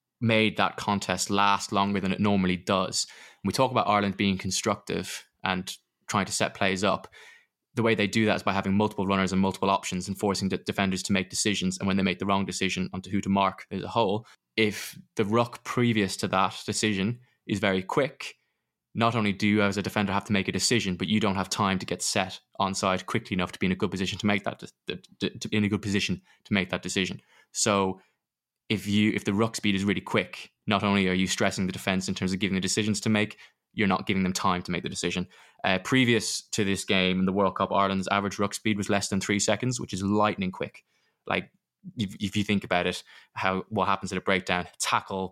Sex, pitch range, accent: male, 95-105 Hz, British